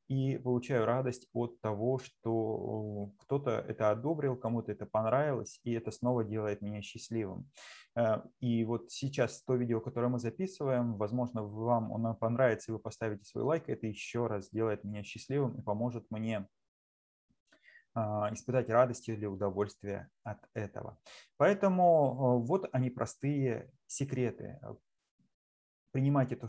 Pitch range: 110-130 Hz